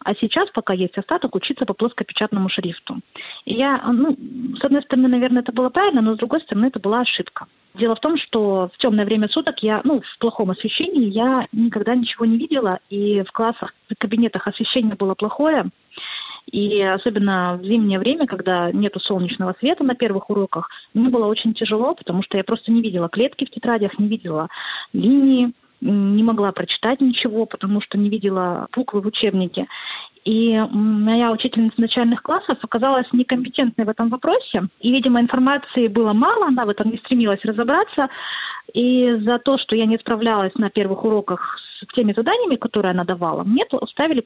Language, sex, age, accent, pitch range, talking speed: Russian, female, 20-39, native, 205-255 Hz, 175 wpm